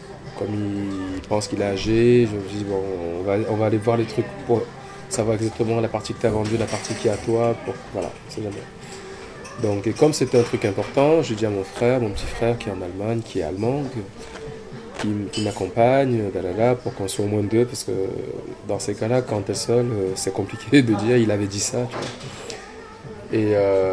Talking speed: 225 wpm